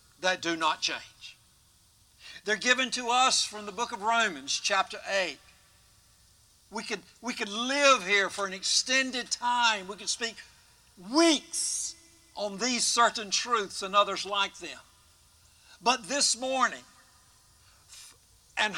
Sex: male